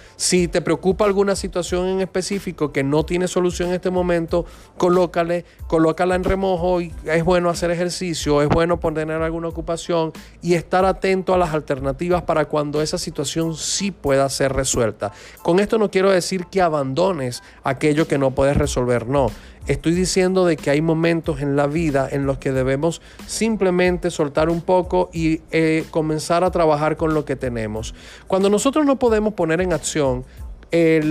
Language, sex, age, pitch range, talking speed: Spanish, male, 40-59, 140-175 Hz, 170 wpm